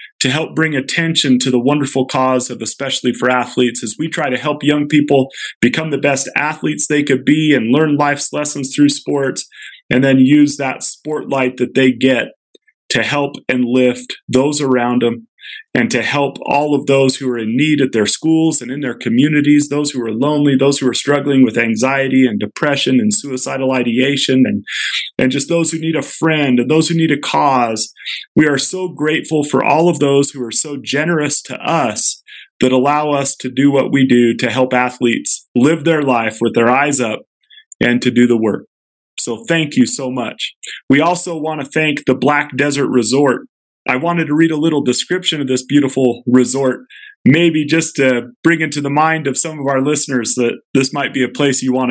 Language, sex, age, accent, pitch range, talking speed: English, male, 30-49, American, 125-150 Hz, 205 wpm